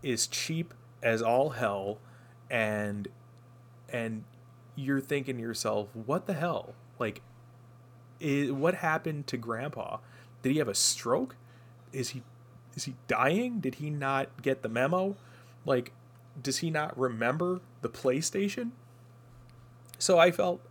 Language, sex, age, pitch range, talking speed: English, male, 30-49, 115-130 Hz, 135 wpm